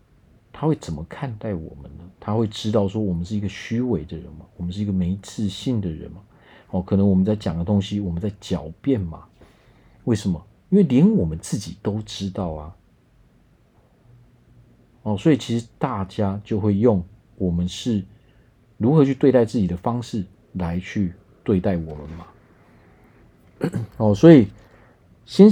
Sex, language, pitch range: male, Chinese, 90-120 Hz